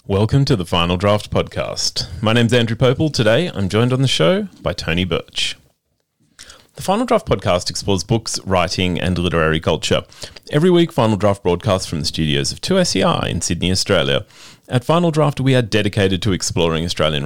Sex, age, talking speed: male, 30-49, 175 wpm